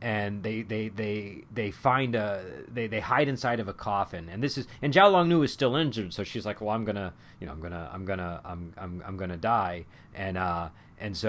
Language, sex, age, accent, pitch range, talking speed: English, male, 30-49, American, 95-120 Hz, 255 wpm